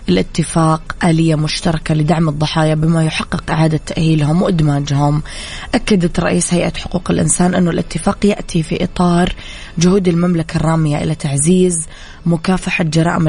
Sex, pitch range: female, 160-185 Hz